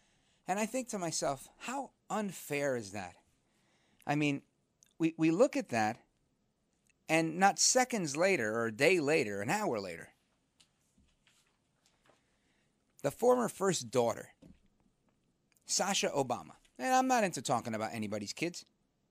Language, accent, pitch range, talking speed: English, American, 120-190 Hz, 130 wpm